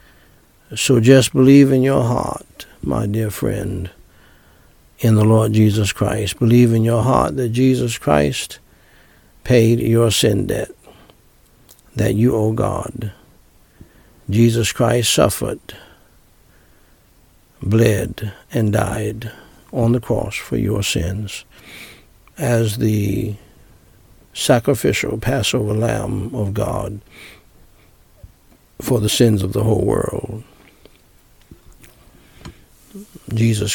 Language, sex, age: English, male, 60-79